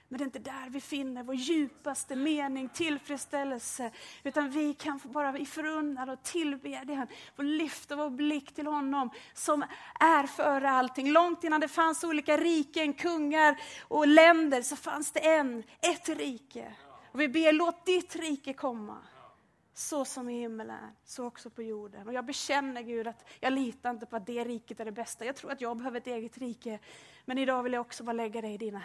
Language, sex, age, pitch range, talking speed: Swedish, female, 30-49, 250-305 Hz, 190 wpm